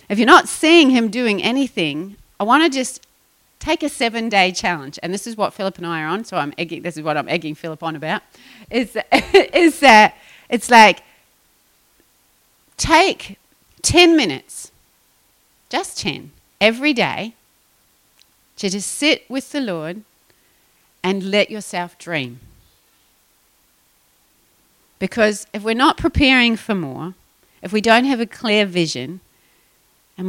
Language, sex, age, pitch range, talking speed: English, female, 40-59, 170-230 Hz, 145 wpm